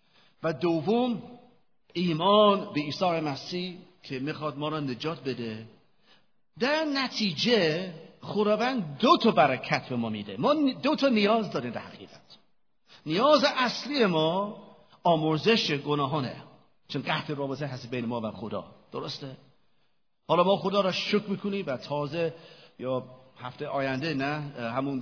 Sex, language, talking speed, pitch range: male, Persian, 130 wpm, 145-220 Hz